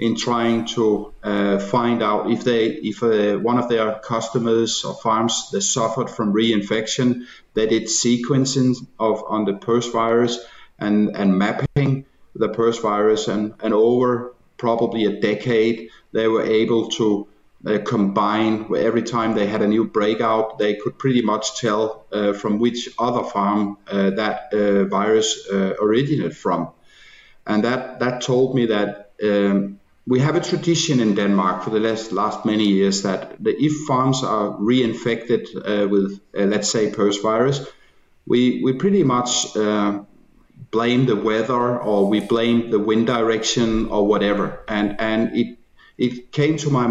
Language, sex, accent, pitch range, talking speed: English, male, Danish, 105-120 Hz, 160 wpm